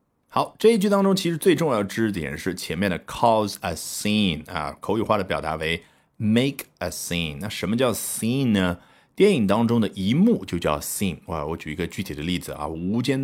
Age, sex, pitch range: 30-49, male, 90-130 Hz